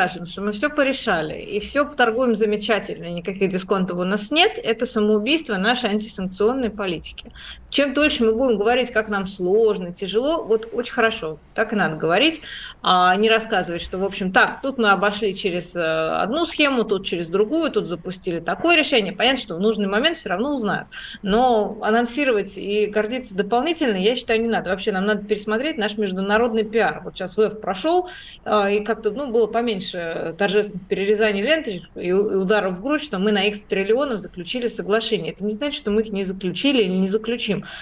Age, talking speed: 30-49, 175 wpm